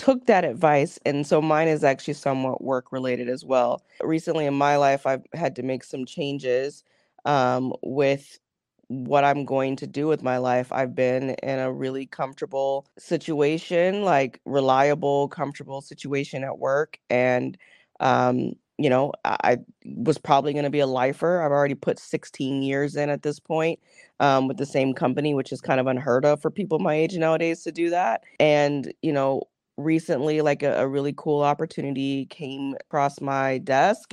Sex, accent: female, American